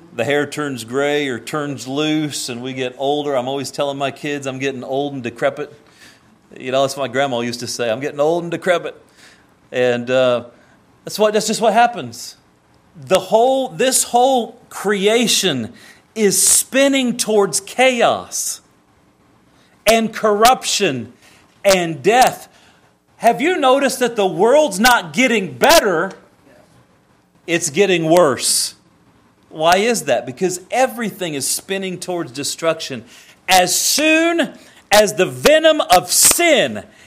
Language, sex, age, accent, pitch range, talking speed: English, male, 40-59, American, 140-225 Hz, 135 wpm